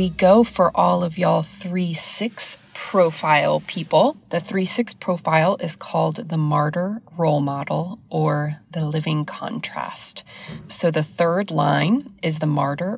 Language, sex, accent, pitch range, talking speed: English, female, American, 155-195 Hz, 135 wpm